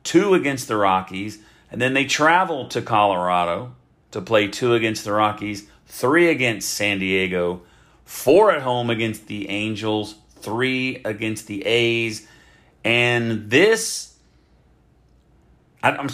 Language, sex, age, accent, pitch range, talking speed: English, male, 40-59, American, 100-135 Hz, 125 wpm